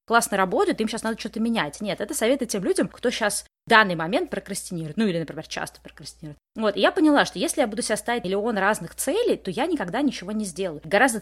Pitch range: 185-235 Hz